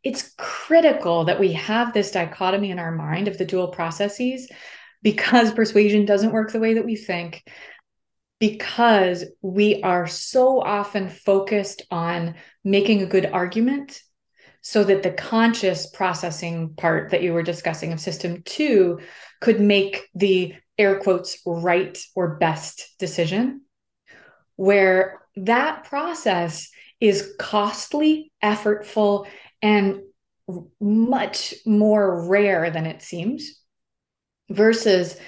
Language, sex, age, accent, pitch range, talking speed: English, female, 30-49, American, 180-220 Hz, 120 wpm